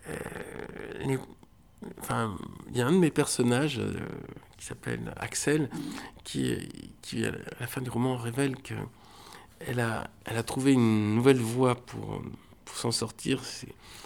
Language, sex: French, male